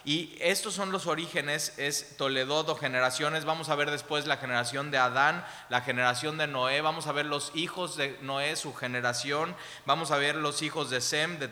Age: 20-39